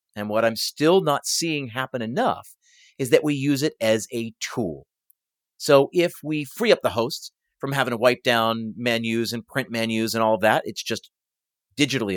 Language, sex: English, male